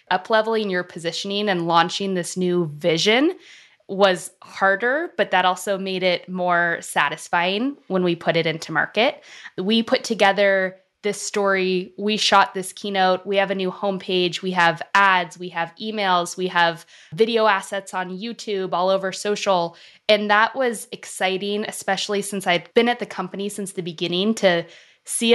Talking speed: 165 wpm